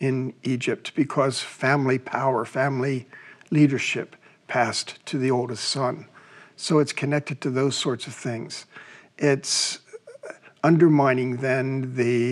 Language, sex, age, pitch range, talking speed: English, male, 50-69, 130-150 Hz, 115 wpm